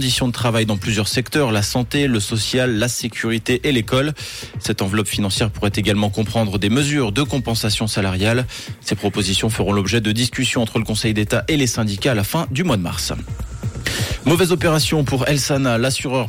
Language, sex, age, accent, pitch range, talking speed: French, male, 20-39, French, 105-130 Hz, 180 wpm